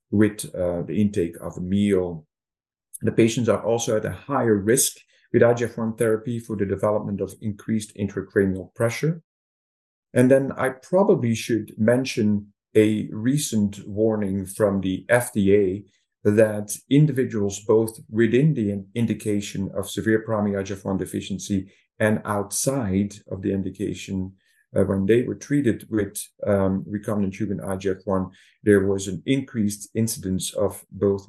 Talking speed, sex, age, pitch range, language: 135 wpm, male, 50-69, 95-115 Hz, English